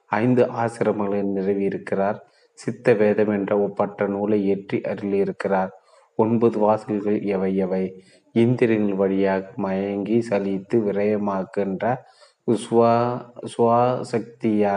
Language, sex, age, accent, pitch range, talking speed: Tamil, male, 30-49, native, 100-110 Hz, 75 wpm